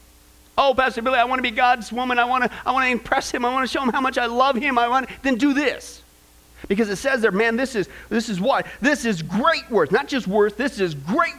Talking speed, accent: 280 wpm, American